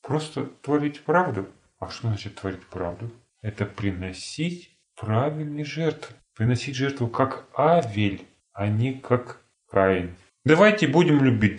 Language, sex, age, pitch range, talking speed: Russian, male, 30-49, 100-150 Hz, 120 wpm